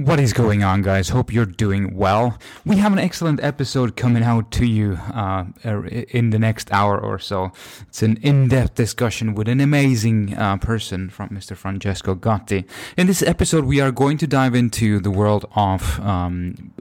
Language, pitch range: English, 95-120 Hz